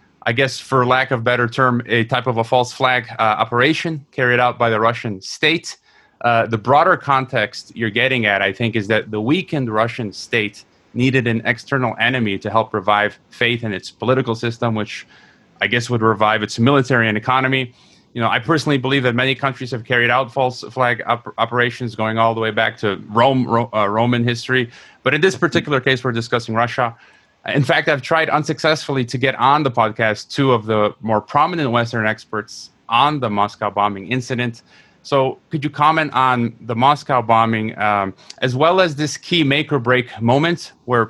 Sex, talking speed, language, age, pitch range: male, 190 wpm, English, 30-49, 115-130 Hz